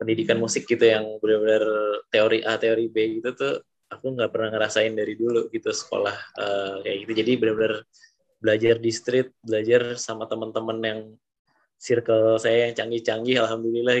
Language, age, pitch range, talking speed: Indonesian, 20-39, 110-125 Hz, 155 wpm